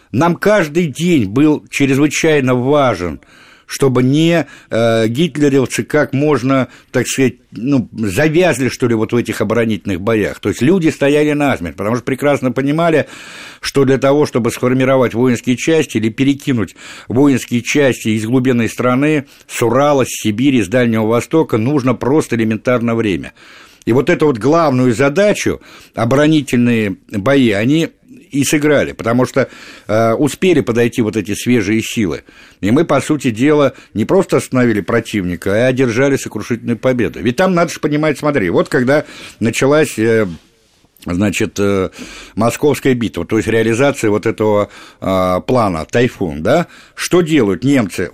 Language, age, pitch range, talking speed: Russian, 60-79, 110-145 Hz, 145 wpm